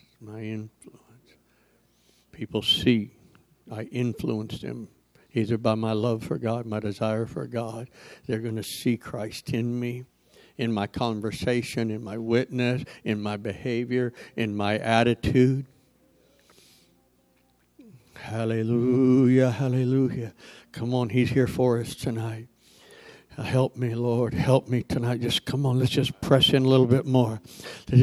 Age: 60-79